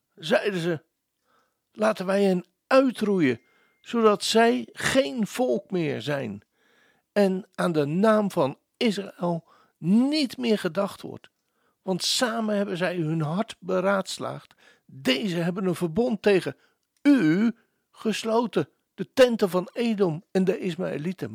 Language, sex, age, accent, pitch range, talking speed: Dutch, male, 60-79, Dutch, 165-215 Hz, 120 wpm